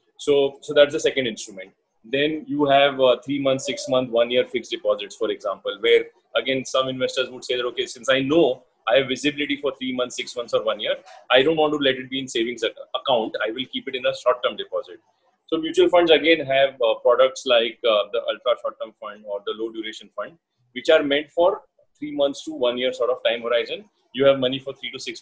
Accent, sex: Indian, male